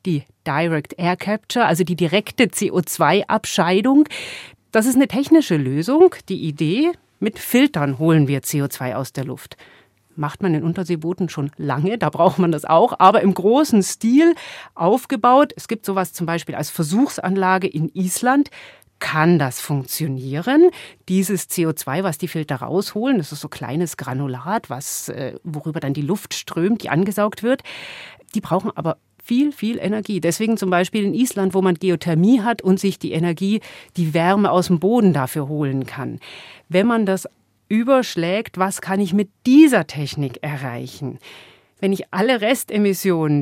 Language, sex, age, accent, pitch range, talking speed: German, female, 40-59, German, 155-210 Hz, 155 wpm